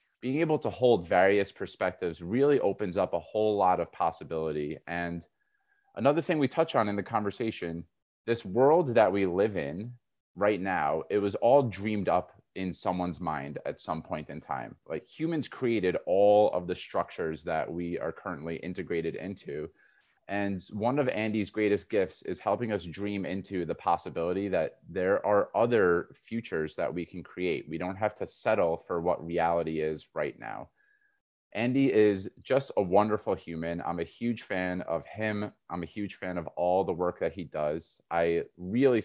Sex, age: male, 30-49